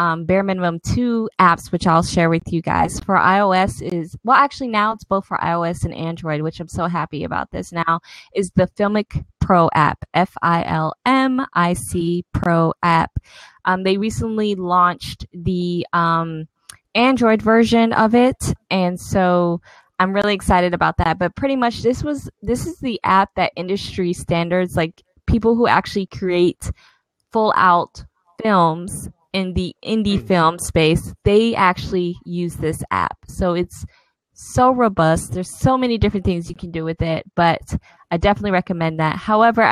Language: English